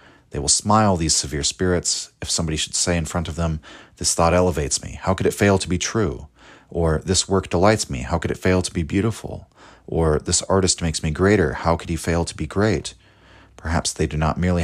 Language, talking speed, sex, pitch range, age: English, 225 wpm, male, 75-90 Hz, 30-49